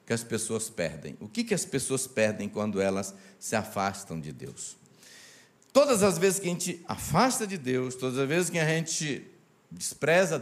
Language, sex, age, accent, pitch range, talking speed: Portuguese, male, 60-79, Brazilian, 140-220 Hz, 185 wpm